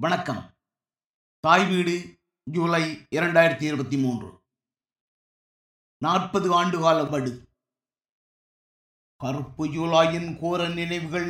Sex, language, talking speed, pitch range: male, Tamil, 75 wpm, 150-170 Hz